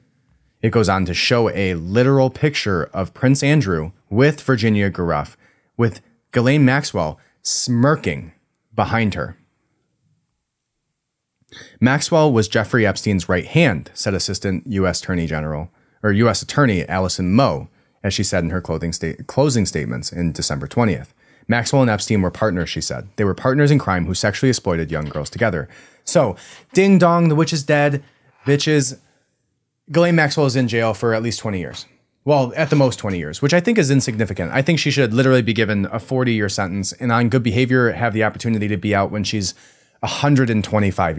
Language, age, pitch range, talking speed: English, 30-49, 95-135 Hz, 170 wpm